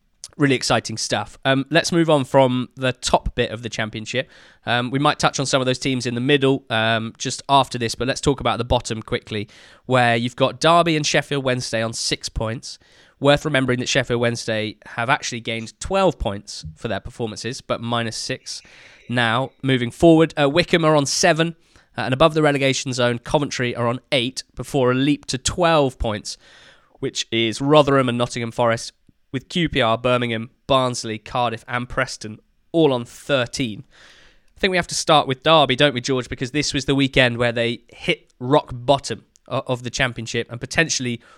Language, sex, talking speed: English, male, 185 wpm